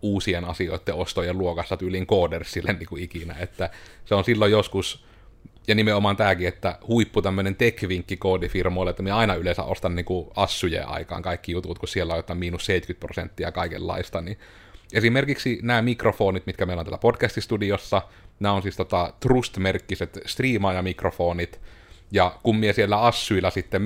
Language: Finnish